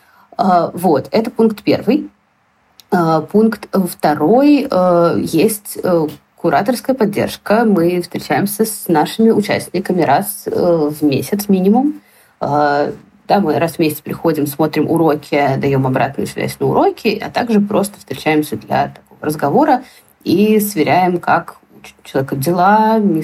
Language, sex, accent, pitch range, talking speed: Russian, female, native, 155-210 Hz, 115 wpm